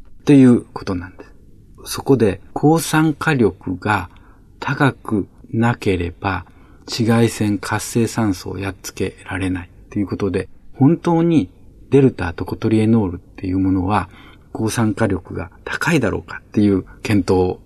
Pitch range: 95-120 Hz